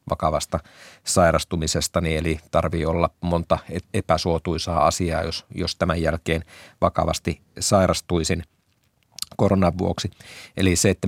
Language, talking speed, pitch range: Finnish, 110 wpm, 85-95 Hz